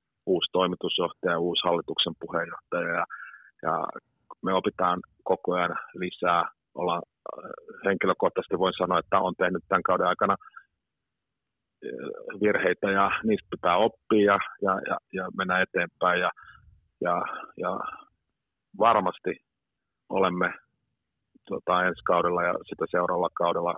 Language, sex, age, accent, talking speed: Finnish, male, 30-49, native, 95 wpm